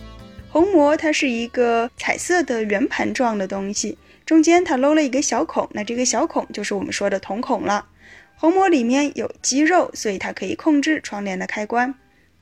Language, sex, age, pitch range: Chinese, female, 10-29, 210-310 Hz